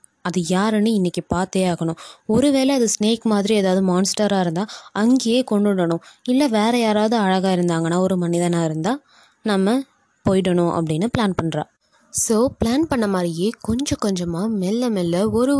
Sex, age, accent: female, 20-39, native